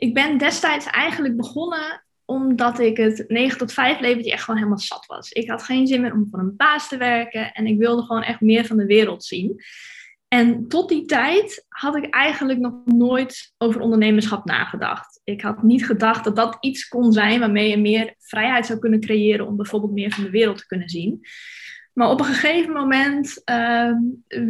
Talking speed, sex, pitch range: 200 wpm, female, 220-270 Hz